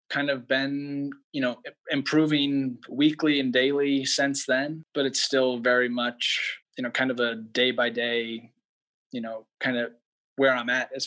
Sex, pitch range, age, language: male, 120-135 Hz, 20-39, English